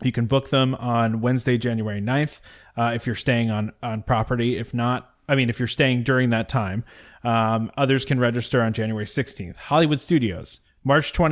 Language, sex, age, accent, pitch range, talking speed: English, male, 30-49, American, 115-140 Hz, 185 wpm